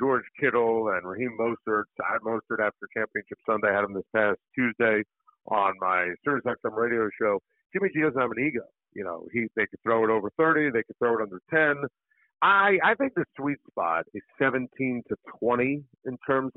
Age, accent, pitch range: 50-69, American, 120-170 Hz